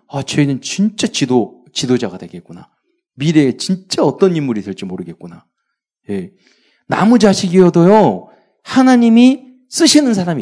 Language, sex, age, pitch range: Korean, male, 40-59, 150-230 Hz